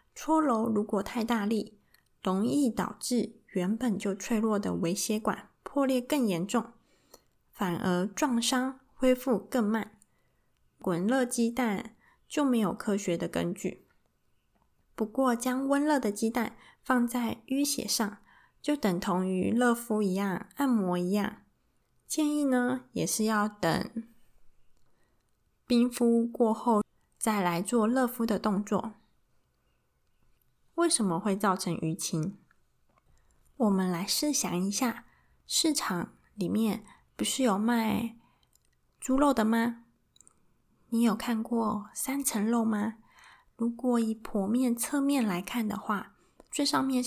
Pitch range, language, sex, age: 205-245 Hz, Chinese, female, 20-39